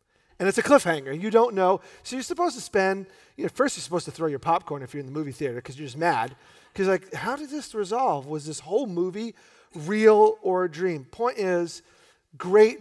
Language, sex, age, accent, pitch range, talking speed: English, male, 40-59, American, 170-240 Hz, 225 wpm